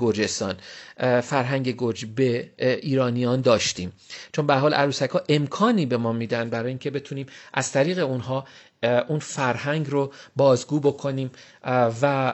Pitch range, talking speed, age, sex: 130-165 Hz, 130 wpm, 40-59, male